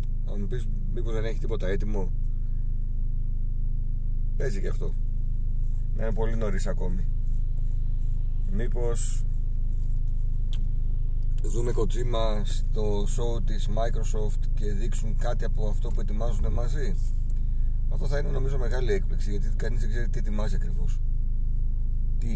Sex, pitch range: male, 100-110 Hz